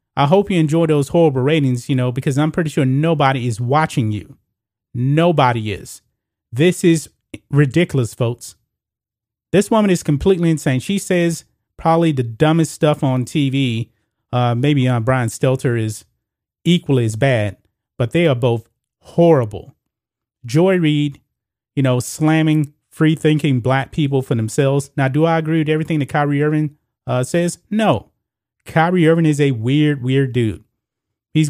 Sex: male